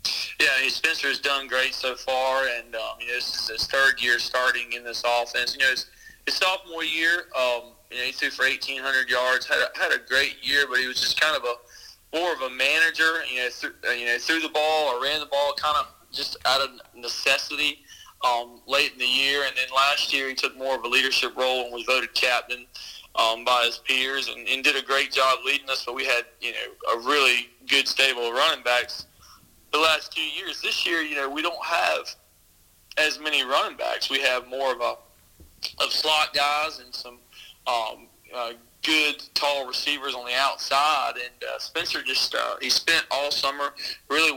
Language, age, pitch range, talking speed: English, 40-59, 120-140 Hz, 210 wpm